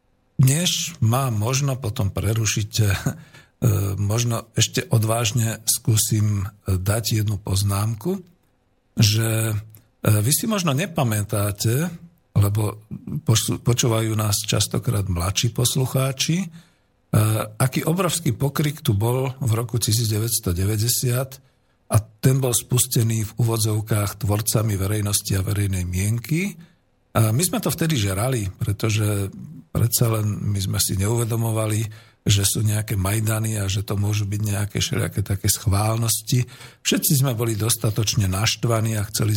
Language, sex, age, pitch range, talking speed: Slovak, male, 50-69, 105-130 Hz, 115 wpm